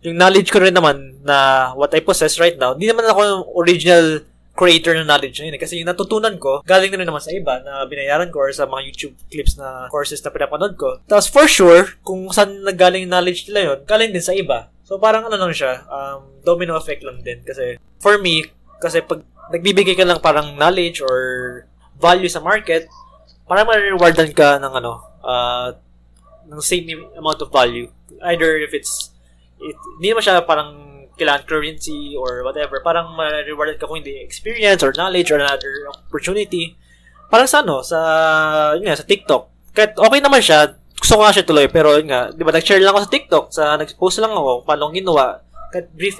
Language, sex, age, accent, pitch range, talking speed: English, male, 20-39, Filipino, 145-200 Hz, 190 wpm